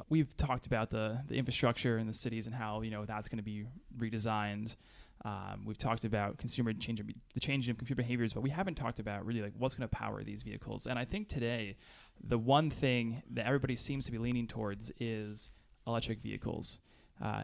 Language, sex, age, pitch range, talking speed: English, male, 20-39, 110-125 Hz, 205 wpm